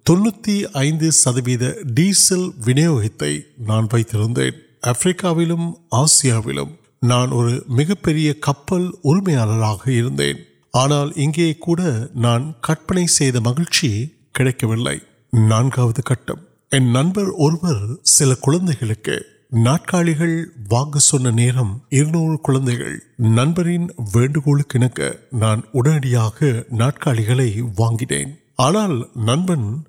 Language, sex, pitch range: Urdu, male, 120-165 Hz